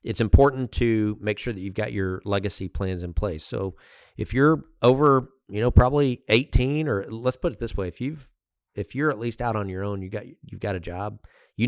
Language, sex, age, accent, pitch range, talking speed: English, male, 40-59, American, 95-105 Hz, 225 wpm